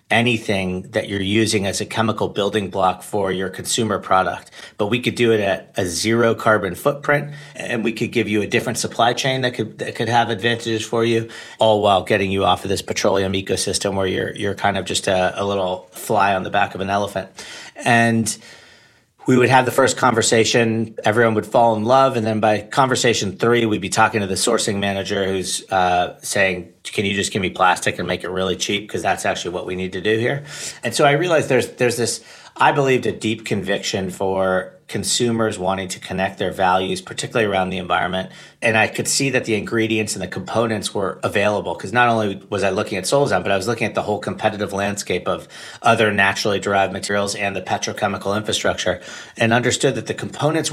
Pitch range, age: 100-115 Hz, 40-59